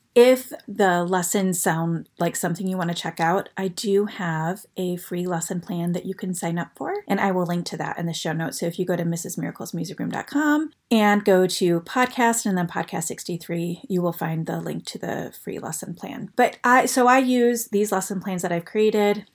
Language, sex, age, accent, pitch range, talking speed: English, female, 30-49, American, 170-205 Hz, 215 wpm